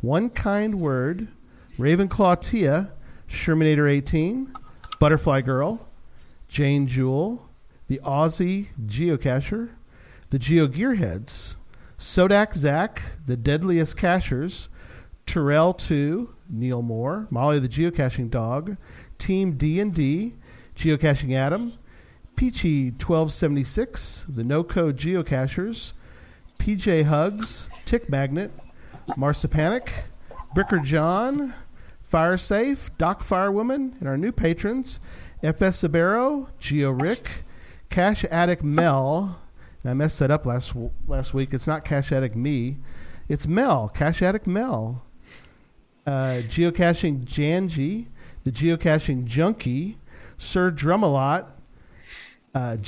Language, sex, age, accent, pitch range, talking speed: English, male, 40-59, American, 135-185 Hz, 105 wpm